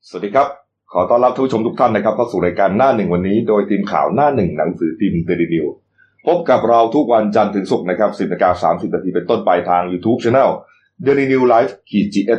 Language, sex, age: Thai, male, 30-49